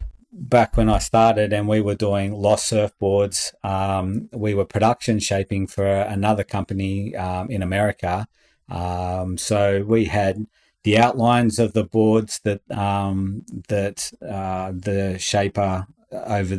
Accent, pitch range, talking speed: Australian, 95-105 Hz, 135 wpm